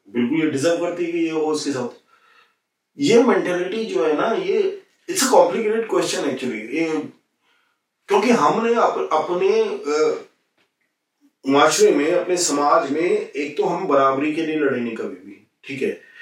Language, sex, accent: Hindi, male, native